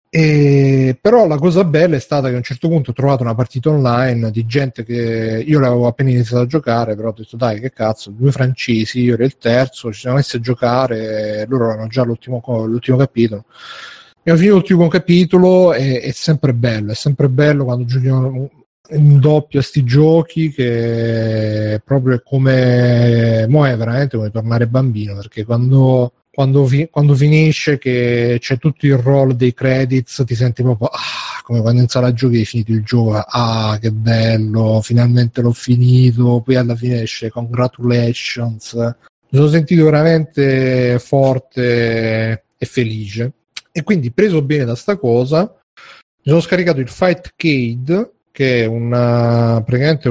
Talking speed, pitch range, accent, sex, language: 165 wpm, 115-140 Hz, native, male, Italian